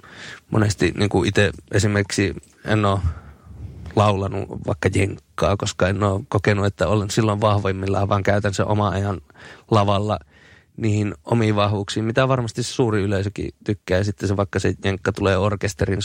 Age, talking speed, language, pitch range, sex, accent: 30-49, 155 wpm, Finnish, 95-110 Hz, male, native